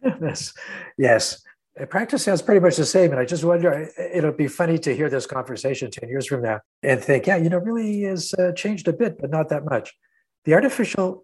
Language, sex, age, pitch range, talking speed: English, male, 60-79, 120-170 Hz, 215 wpm